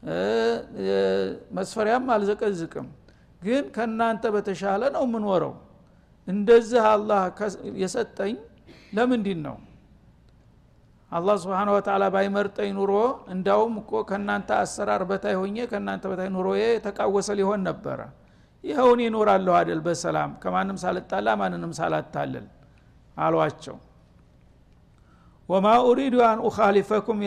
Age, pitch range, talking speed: 60-79, 190-225 Hz, 90 wpm